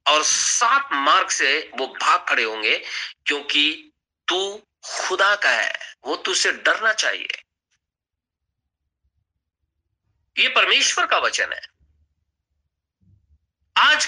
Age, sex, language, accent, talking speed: 50-69, male, Hindi, native, 100 wpm